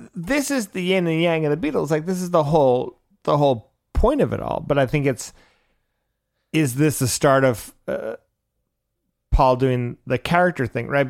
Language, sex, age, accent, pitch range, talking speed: English, male, 30-49, American, 110-140 Hz, 195 wpm